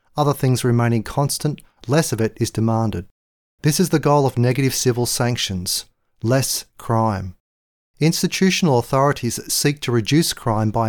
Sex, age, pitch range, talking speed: male, 40-59, 110-140 Hz, 145 wpm